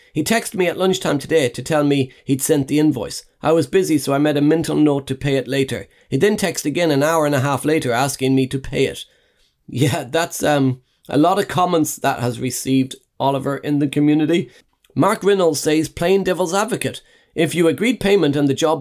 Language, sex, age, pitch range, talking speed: English, male, 30-49, 135-165 Hz, 215 wpm